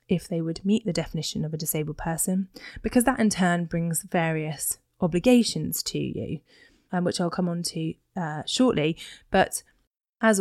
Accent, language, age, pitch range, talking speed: British, English, 20-39, 165-220 Hz, 165 wpm